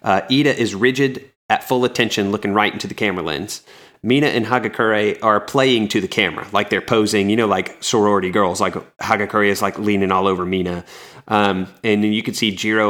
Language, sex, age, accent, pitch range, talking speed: English, male, 30-49, American, 95-110 Hz, 205 wpm